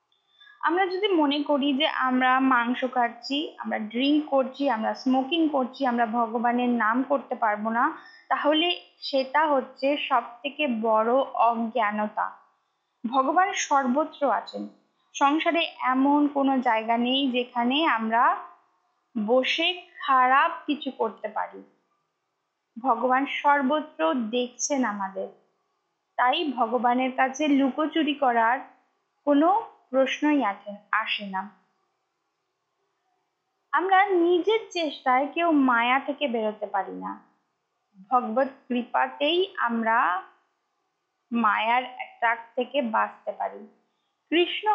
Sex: female